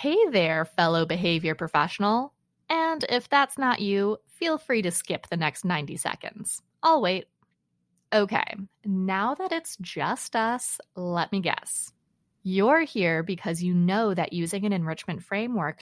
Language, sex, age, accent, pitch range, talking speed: English, female, 20-39, American, 170-230 Hz, 150 wpm